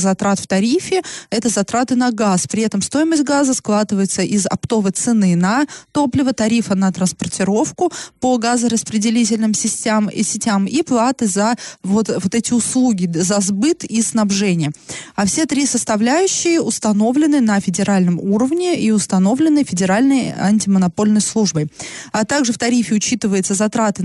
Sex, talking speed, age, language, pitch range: female, 130 wpm, 20-39, Russian, 195-250 Hz